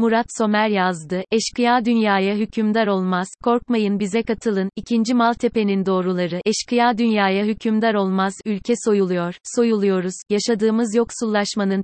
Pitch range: 195-225 Hz